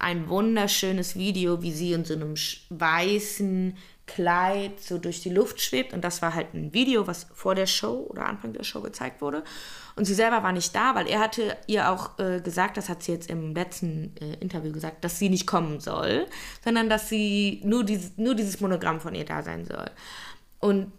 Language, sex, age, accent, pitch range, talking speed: German, female, 20-39, German, 175-230 Hz, 205 wpm